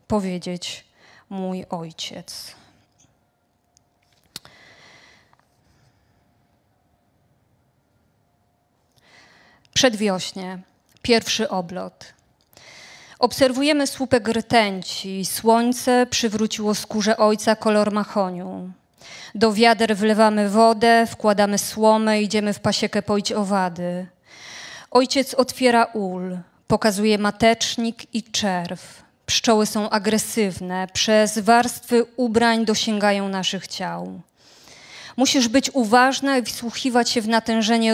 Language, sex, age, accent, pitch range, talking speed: Polish, female, 20-39, native, 185-230 Hz, 80 wpm